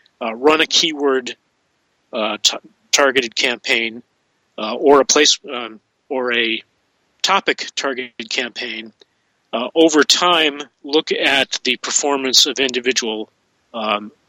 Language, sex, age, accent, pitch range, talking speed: English, male, 40-59, American, 115-135 Hz, 120 wpm